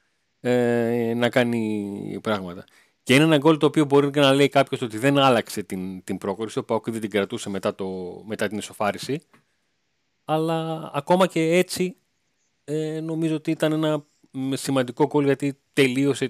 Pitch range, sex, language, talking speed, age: 110-150 Hz, male, Greek, 155 wpm, 30-49